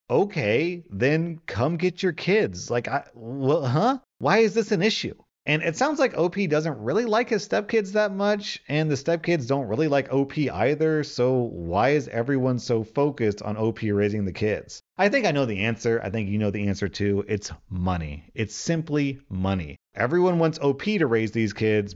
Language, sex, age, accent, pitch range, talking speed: English, male, 30-49, American, 100-150 Hz, 195 wpm